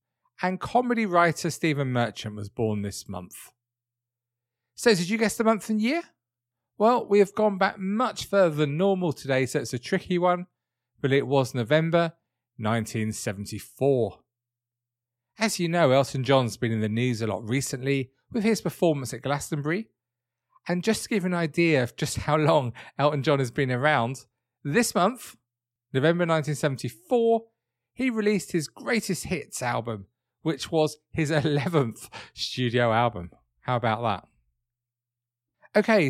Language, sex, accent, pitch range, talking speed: English, male, British, 120-175 Hz, 150 wpm